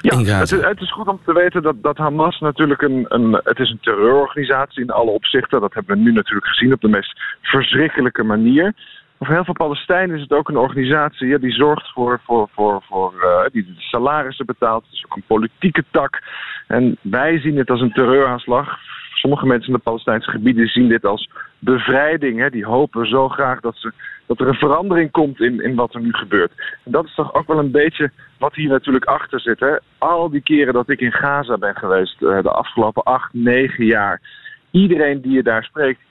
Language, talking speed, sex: Dutch, 205 wpm, male